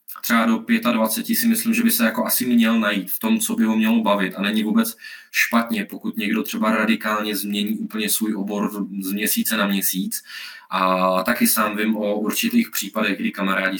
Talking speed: 190 wpm